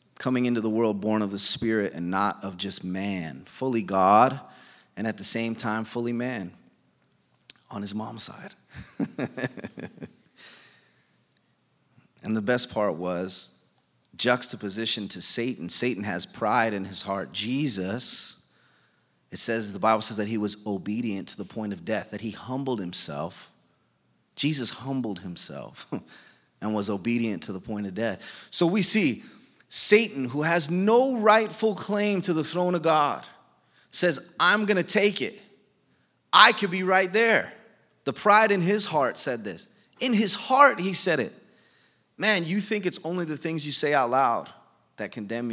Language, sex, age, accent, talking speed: English, male, 30-49, American, 160 wpm